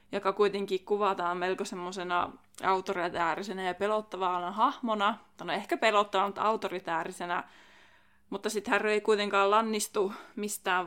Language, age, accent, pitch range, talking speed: Finnish, 20-39, native, 185-225 Hz, 115 wpm